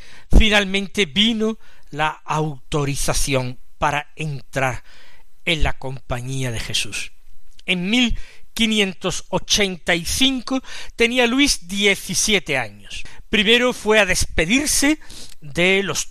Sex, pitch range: male, 145-220 Hz